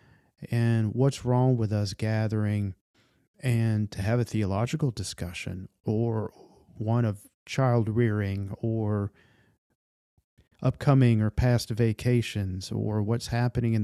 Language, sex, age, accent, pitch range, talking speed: English, male, 40-59, American, 100-120 Hz, 115 wpm